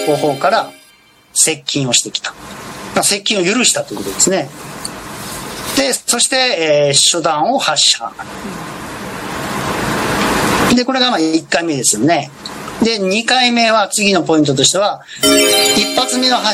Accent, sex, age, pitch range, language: native, male, 40-59, 150-240 Hz, Japanese